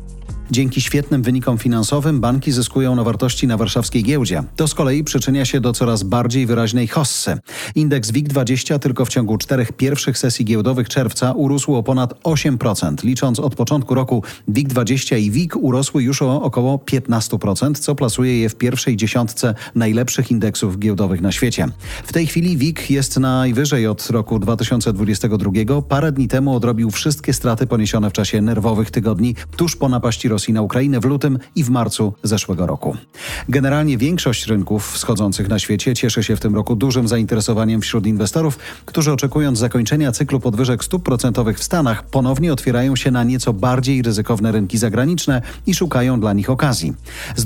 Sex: male